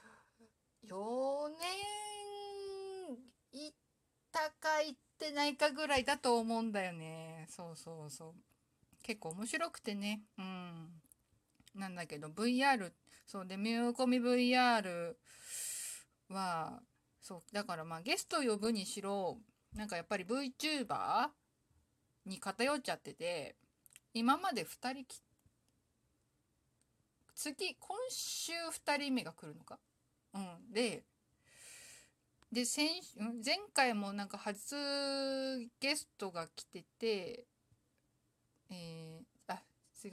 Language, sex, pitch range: Japanese, female, 185-280 Hz